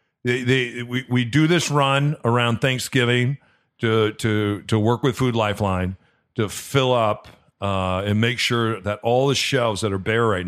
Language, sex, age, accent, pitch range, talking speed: English, male, 40-59, American, 105-130 Hz, 180 wpm